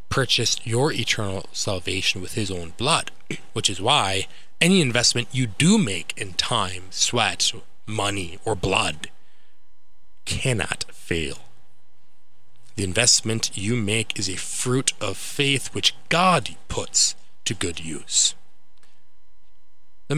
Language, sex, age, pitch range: English, male, 30-49, 100-130 Hz